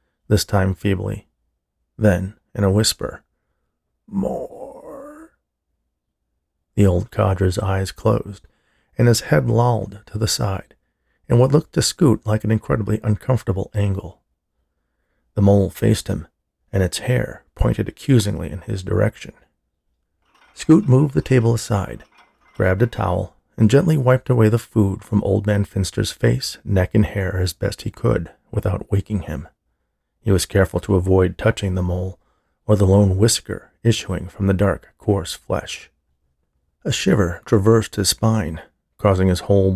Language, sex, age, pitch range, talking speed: English, male, 40-59, 85-110 Hz, 145 wpm